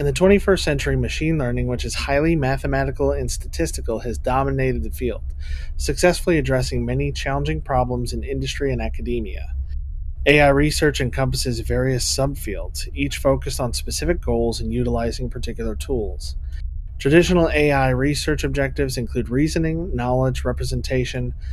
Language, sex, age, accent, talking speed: English, male, 30-49, American, 130 wpm